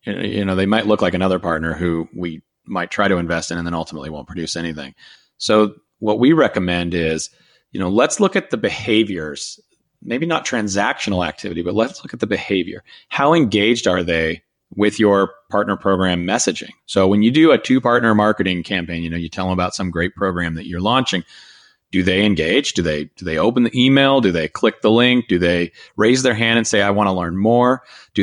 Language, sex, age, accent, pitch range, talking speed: English, male, 30-49, American, 90-120 Hz, 215 wpm